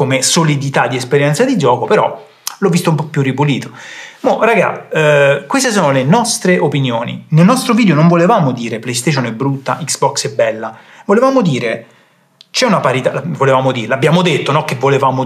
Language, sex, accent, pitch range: Italian, male, native, 130-180 Hz